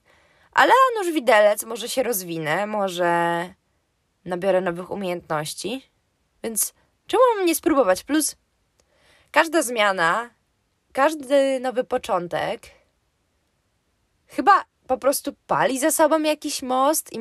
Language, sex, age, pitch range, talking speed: Polish, female, 20-39, 180-255 Hz, 100 wpm